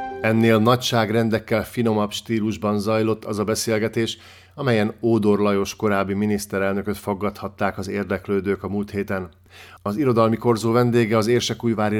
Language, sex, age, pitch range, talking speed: Hungarian, male, 50-69, 95-115 Hz, 120 wpm